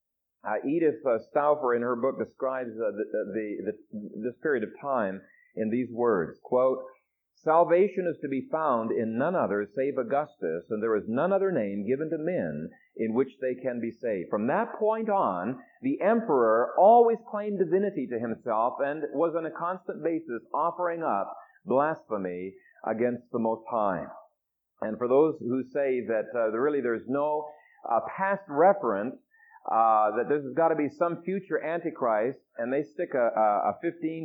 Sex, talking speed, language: male, 165 wpm, English